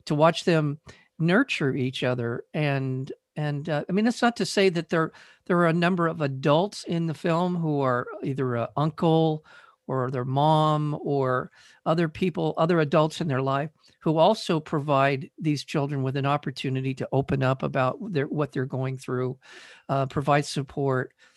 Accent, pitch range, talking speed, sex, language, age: American, 140-175 Hz, 175 wpm, male, English, 50-69